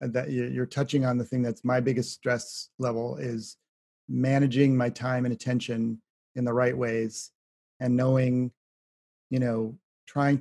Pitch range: 120-145 Hz